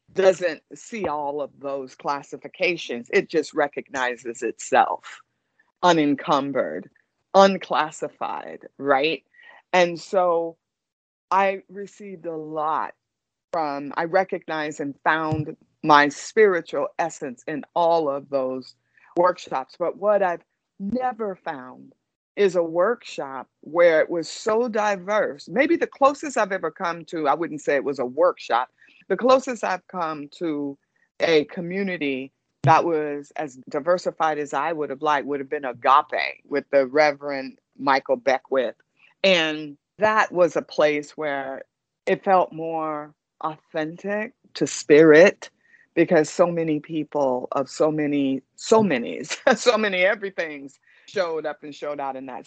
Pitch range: 145-190 Hz